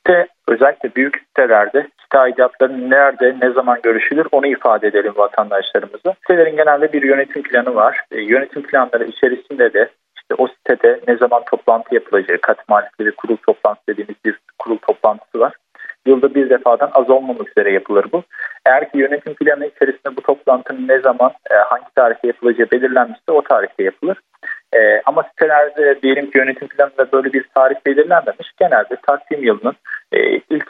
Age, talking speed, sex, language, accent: 40-59, 160 wpm, male, Turkish, native